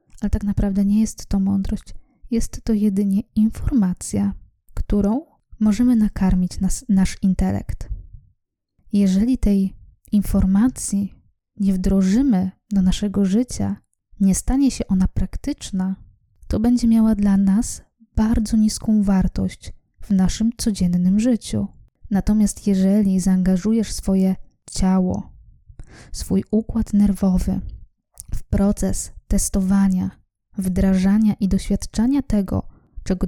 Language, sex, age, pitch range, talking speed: Polish, female, 20-39, 190-215 Hz, 105 wpm